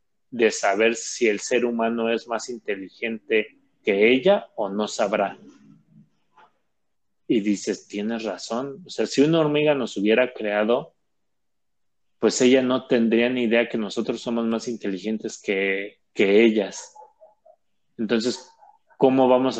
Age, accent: 30-49, Mexican